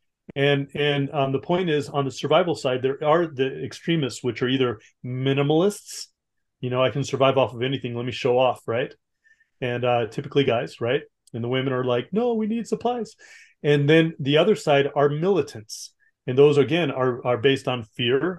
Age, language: 30-49, English